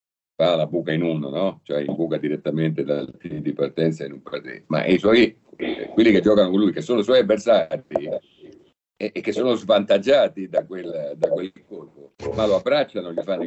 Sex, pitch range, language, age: male, 80-130 Hz, Italian, 50-69